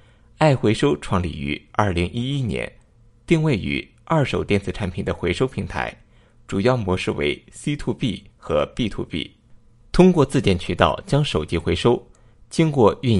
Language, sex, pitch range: Chinese, male, 95-125 Hz